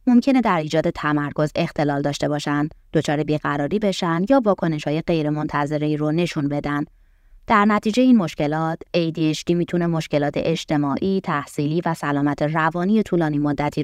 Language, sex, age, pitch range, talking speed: Persian, female, 20-39, 150-180 Hz, 140 wpm